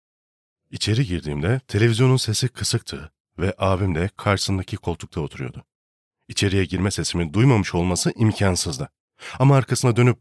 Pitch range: 95-130 Hz